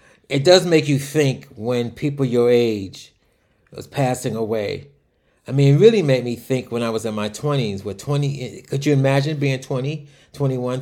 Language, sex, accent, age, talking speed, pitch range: English, male, American, 30-49, 185 wpm, 120-145 Hz